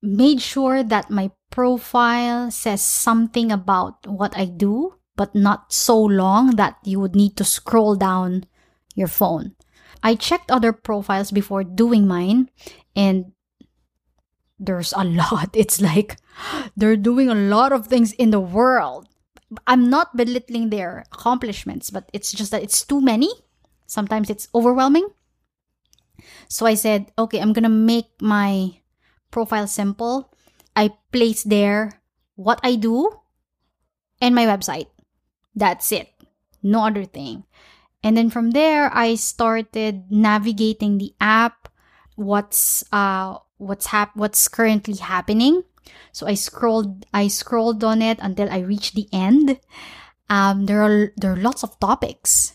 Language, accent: English, Filipino